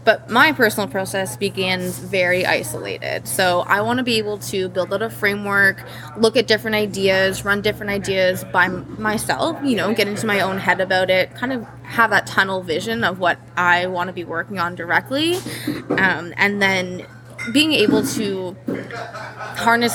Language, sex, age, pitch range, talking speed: English, female, 20-39, 180-220 Hz, 175 wpm